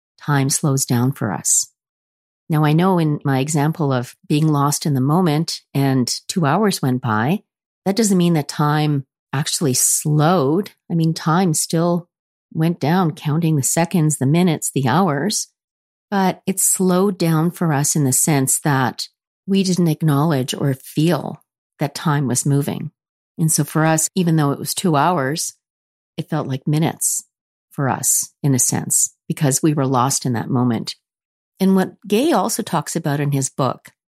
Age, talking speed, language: 50-69, 170 wpm, English